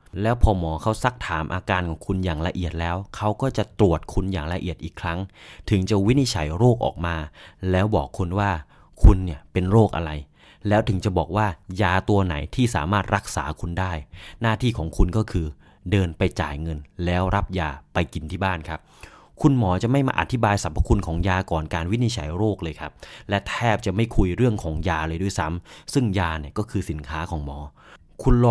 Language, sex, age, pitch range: English, male, 20-39, 90-115 Hz